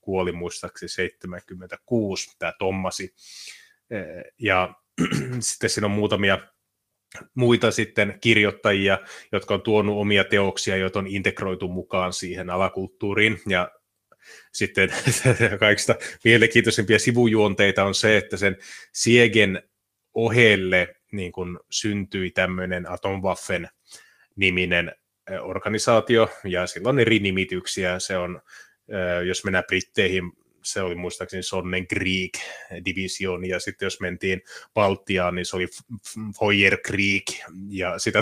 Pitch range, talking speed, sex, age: 95-115 Hz, 105 wpm, male, 30-49